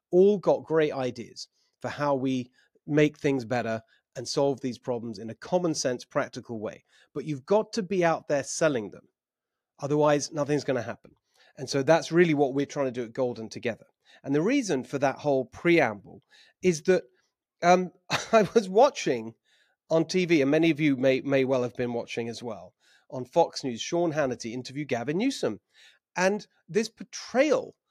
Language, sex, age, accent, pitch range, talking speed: English, male, 30-49, British, 135-200 Hz, 180 wpm